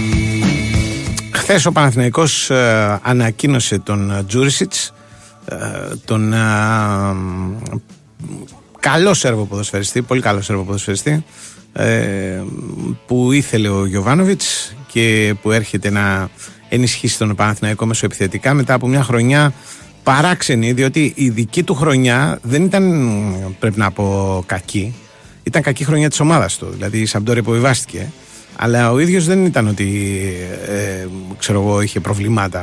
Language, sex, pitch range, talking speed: Greek, male, 105-130 Hz, 120 wpm